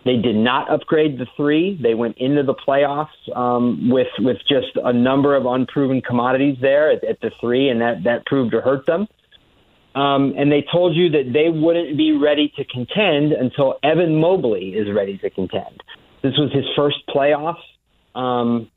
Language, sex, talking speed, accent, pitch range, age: English, male, 180 wpm, American, 120-145 Hz, 40-59